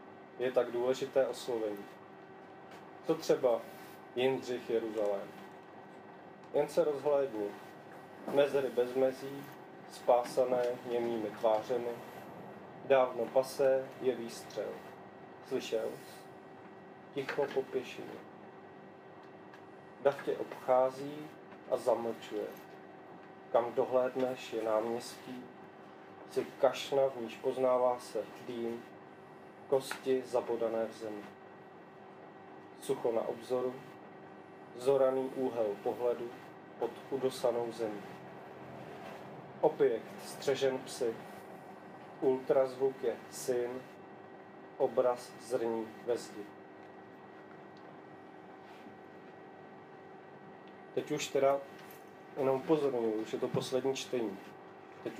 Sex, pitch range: male, 115-135 Hz